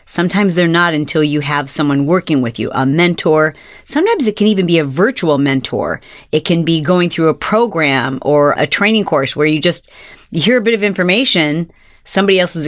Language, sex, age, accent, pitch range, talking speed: English, female, 40-59, American, 155-195 Hz, 195 wpm